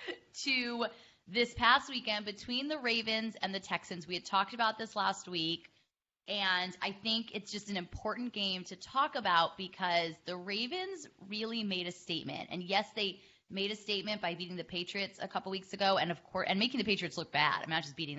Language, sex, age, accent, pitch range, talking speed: English, female, 10-29, American, 170-205 Hz, 205 wpm